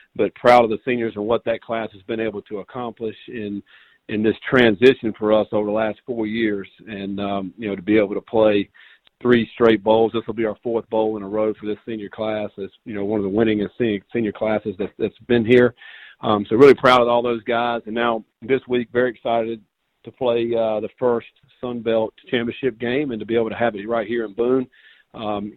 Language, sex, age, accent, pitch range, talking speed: English, male, 40-59, American, 105-120 Hz, 230 wpm